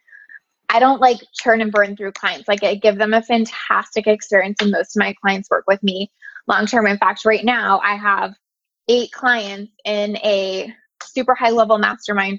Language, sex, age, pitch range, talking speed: English, female, 20-39, 205-245 Hz, 190 wpm